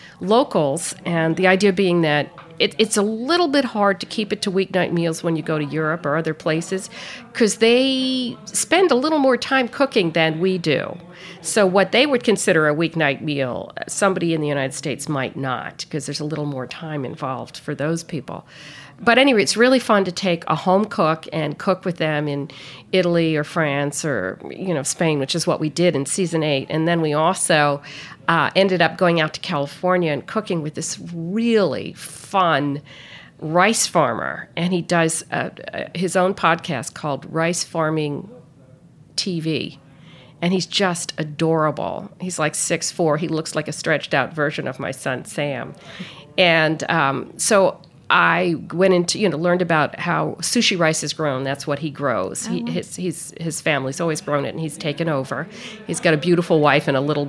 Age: 50-69